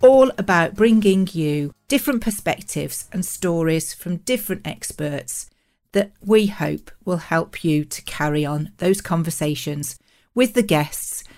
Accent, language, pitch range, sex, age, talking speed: British, English, 150-215 Hz, female, 40-59, 130 wpm